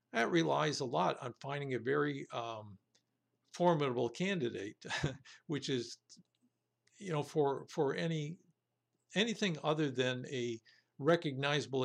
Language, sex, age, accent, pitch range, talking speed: English, male, 60-79, American, 125-160 Hz, 115 wpm